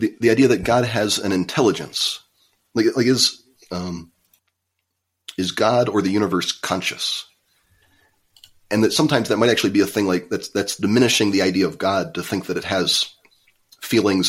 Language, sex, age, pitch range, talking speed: English, male, 30-49, 90-105 Hz, 170 wpm